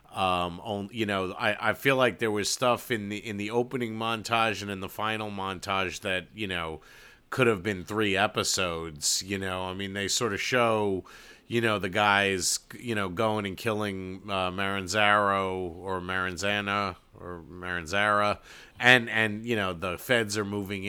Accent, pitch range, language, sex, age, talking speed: American, 95-120 Hz, English, male, 40-59, 170 wpm